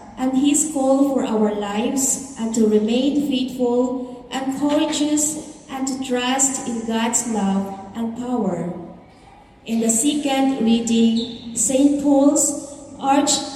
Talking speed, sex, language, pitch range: 120 wpm, female, English, 230-280 Hz